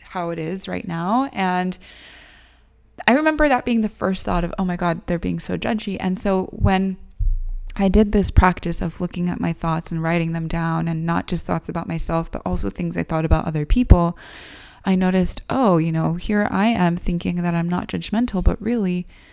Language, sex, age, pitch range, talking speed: English, female, 20-39, 160-185 Hz, 205 wpm